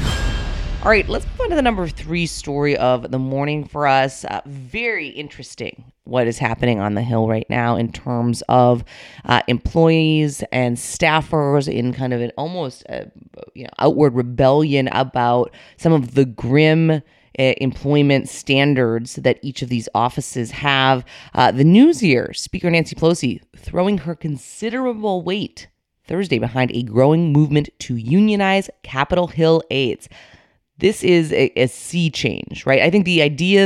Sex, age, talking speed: female, 30-49, 155 wpm